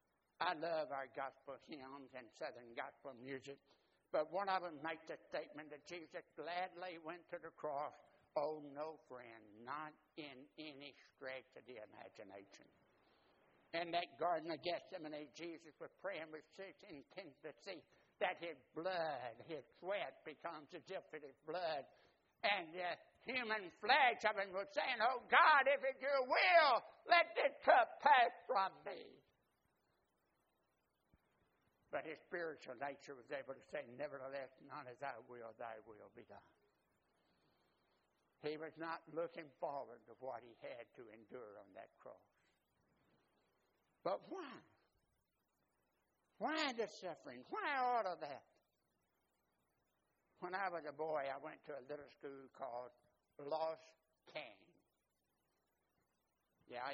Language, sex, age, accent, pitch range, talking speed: English, male, 60-79, American, 140-185 Hz, 135 wpm